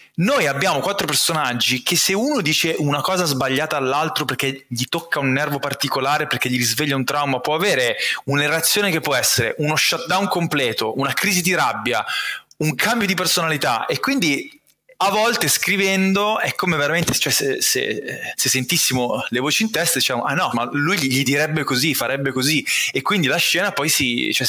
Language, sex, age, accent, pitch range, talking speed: Italian, male, 20-39, native, 135-180 Hz, 180 wpm